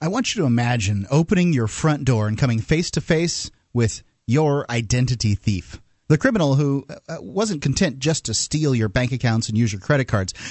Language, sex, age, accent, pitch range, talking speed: English, male, 30-49, American, 115-150 Hz, 200 wpm